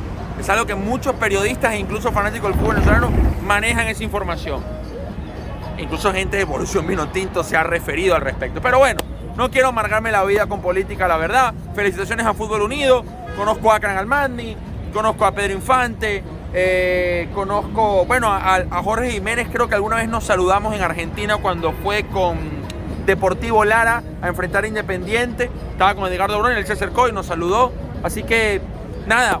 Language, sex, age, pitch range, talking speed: Spanish, male, 30-49, 190-225 Hz, 170 wpm